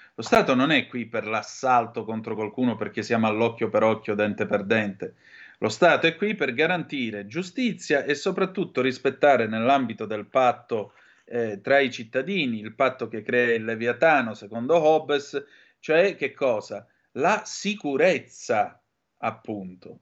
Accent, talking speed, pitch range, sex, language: native, 145 wpm, 115-165 Hz, male, Italian